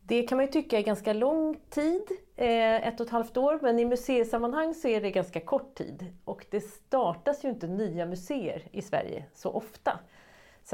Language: Swedish